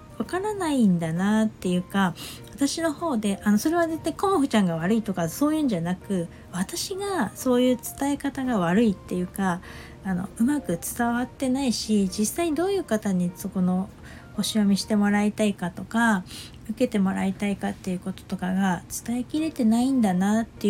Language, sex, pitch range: Japanese, female, 185-235 Hz